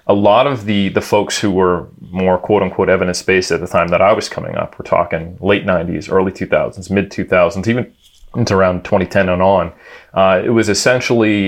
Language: English